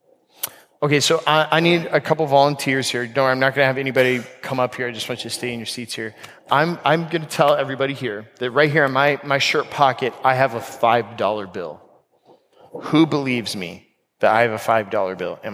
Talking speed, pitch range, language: 230 wpm, 130-170 Hz, English